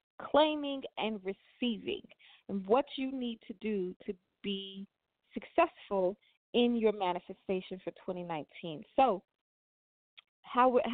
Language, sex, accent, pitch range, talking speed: English, female, American, 185-240 Hz, 105 wpm